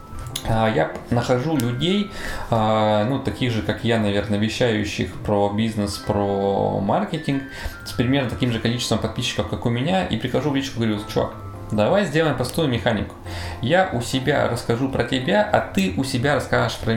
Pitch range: 105-130 Hz